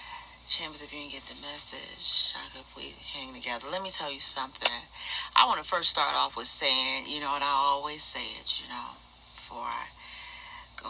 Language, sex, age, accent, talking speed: English, female, 40-59, American, 205 wpm